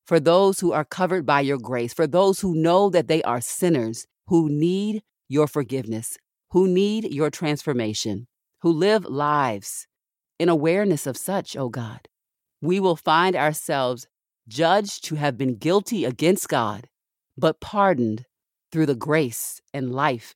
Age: 40-59